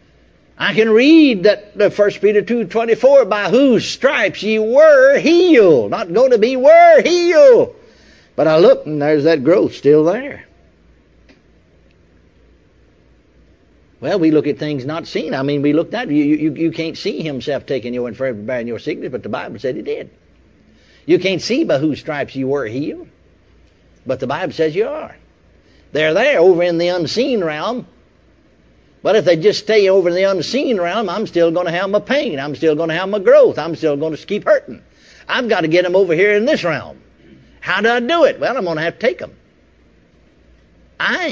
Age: 60-79